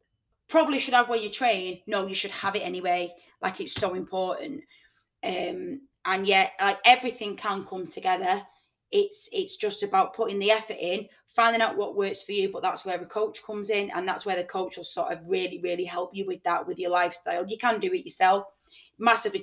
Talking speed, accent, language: 210 wpm, British, English